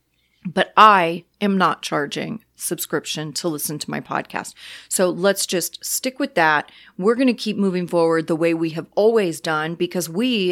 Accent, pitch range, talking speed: American, 180-215 Hz, 175 wpm